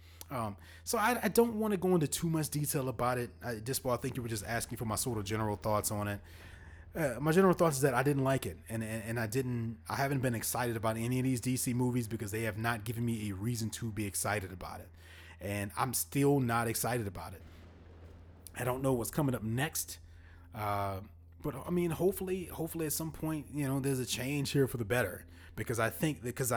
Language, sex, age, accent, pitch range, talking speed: English, male, 30-49, American, 100-135 Hz, 235 wpm